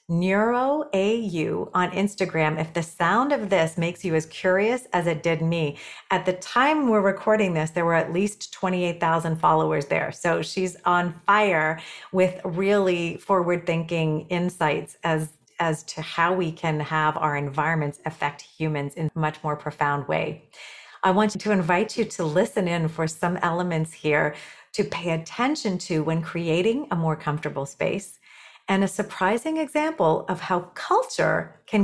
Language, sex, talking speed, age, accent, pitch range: English, female, 160 wpm, 40-59, American, 160-205 Hz